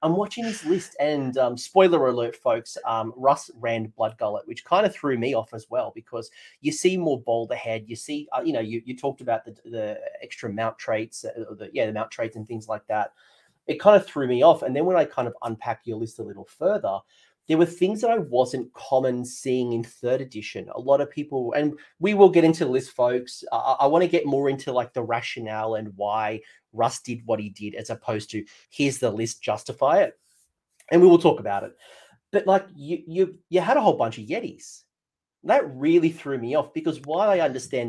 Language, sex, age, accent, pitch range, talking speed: English, male, 30-49, Australian, 115-155 Hz, 230 wpm